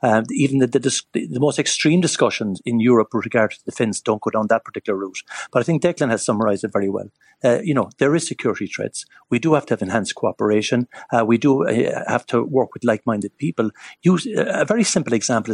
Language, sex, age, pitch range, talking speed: English, male, 50-69, 115-150 Hz, 230 wpm